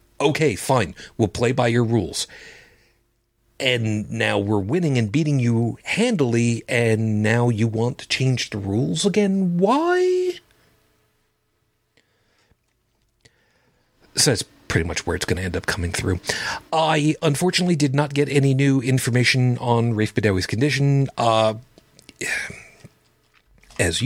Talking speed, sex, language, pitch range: 125 wpm, male, English, 105-135 Hz